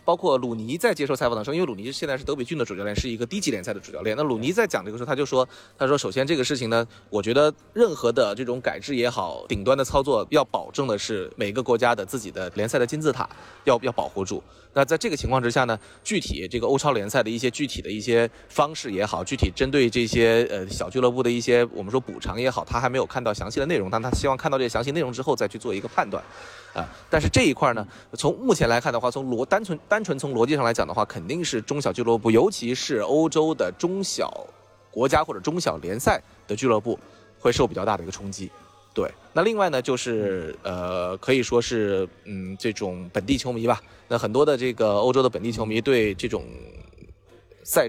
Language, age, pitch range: Chinese, 20-39, 115-145 Hz